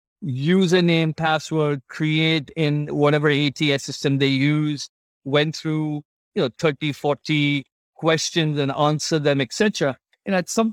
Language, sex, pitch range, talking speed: English, male, 140-160 Hz, 135 wpm